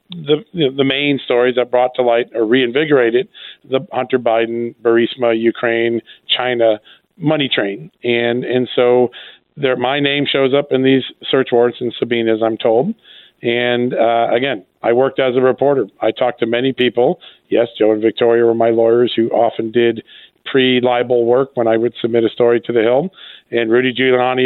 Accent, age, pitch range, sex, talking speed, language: American, 40-59, 115-130 Hz, male, 175 wpm, English